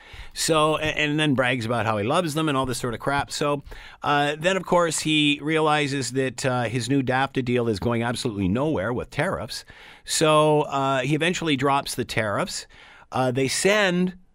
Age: 50-69